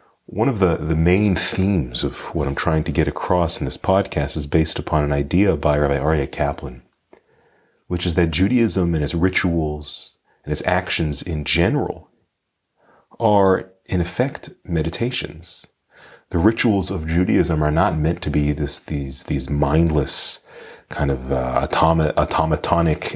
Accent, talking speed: American, 150 wpm